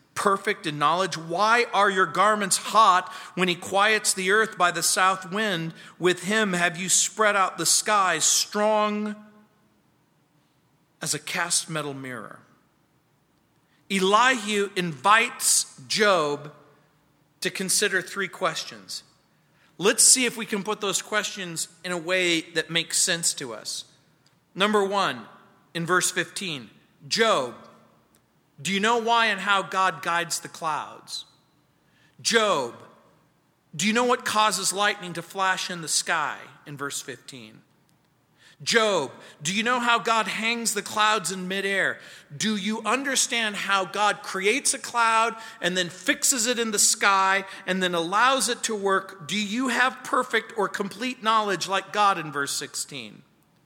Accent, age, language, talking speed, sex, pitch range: American, 40-59, English, 145 wpm, male, 170-215 Hz